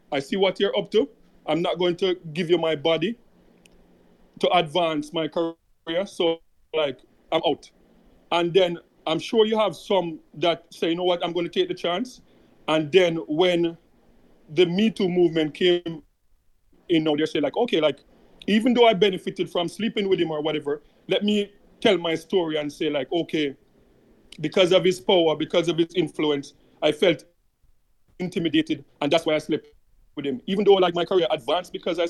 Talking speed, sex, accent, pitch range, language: 185 wpm, male, Nigerian, 160-205 Hz, English